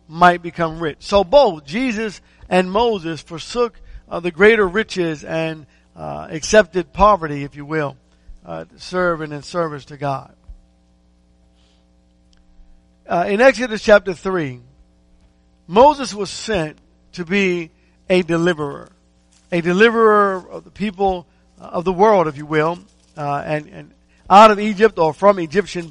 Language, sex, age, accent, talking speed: English, male, 50-69, American, 140 wpm